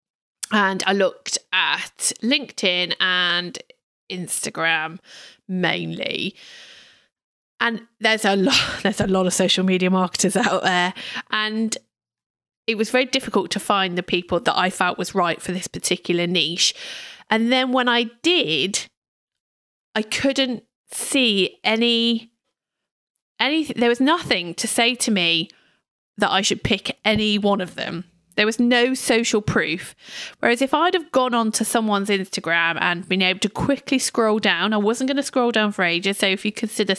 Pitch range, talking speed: 185-240 Hz, 155 wpm